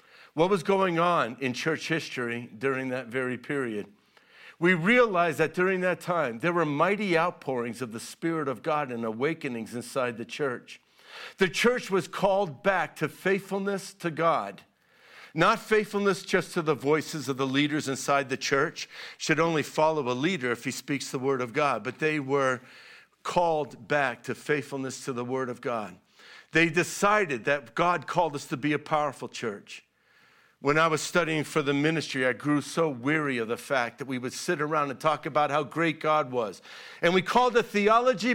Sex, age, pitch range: male, 50-69, 135-180 Hz